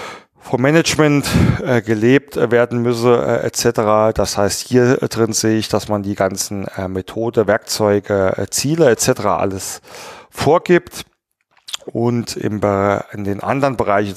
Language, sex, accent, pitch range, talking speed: German, male, German, 100-120 Hz, 115 wpm